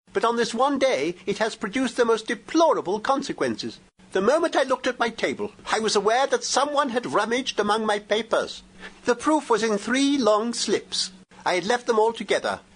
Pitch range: 205-290 Hz